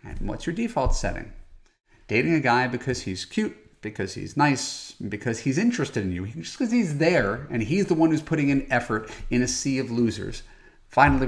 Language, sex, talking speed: English, male, 195 wpm